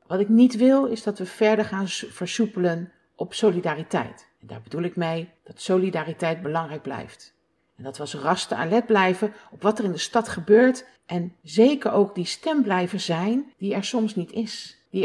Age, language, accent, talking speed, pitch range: 50-69, Dutch, Dutch, 190 wpm, 160-210 Hz